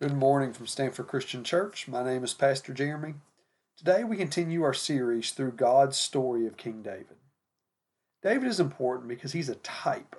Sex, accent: male, American